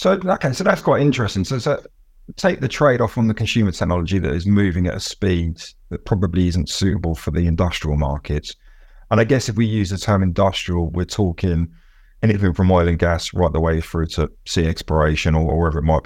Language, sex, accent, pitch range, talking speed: English, male, British, 80-95 Hz, 215 wpm